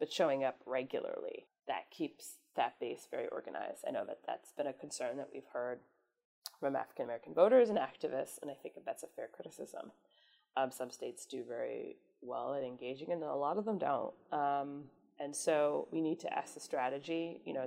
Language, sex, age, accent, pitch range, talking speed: English, female, 30-49, American, 140-200 Hz, 195 wpm